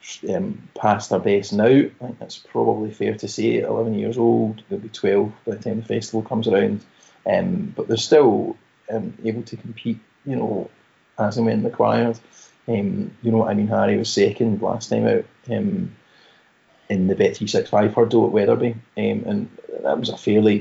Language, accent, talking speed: English, British, 195 wpm